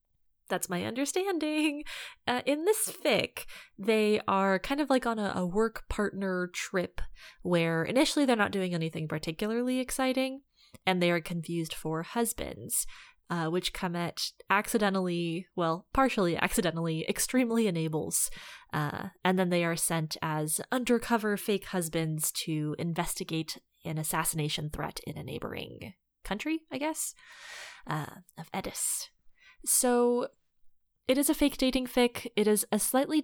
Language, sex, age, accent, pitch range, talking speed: English, female, 20-39, American, 170-255 Hz, 140 wpm